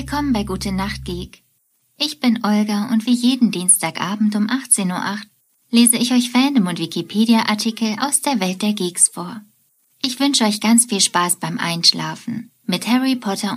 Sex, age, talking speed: female, 20-39, 170 wpm